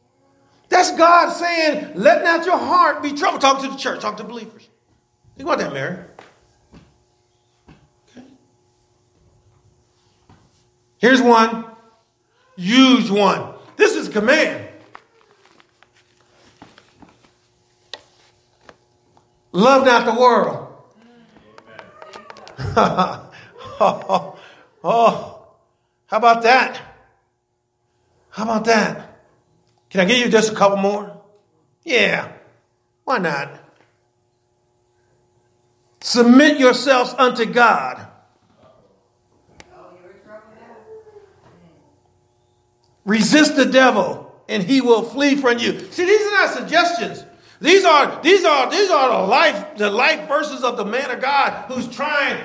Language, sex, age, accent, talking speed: English, male, 50-69, American, 100 wpm